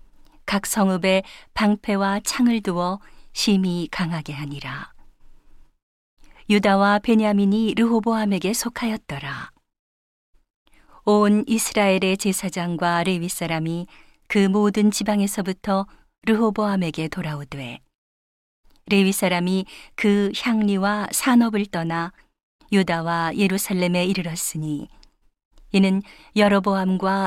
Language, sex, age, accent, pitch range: Korean, female, 40-59, native, 175-210 Hz